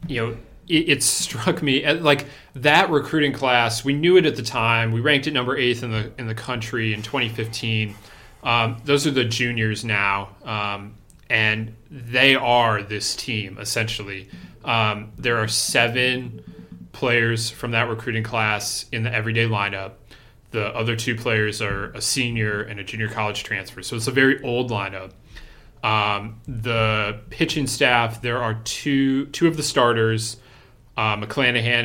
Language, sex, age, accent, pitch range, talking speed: English, male, 30-49, American, 110-130 Hz, 160 wpm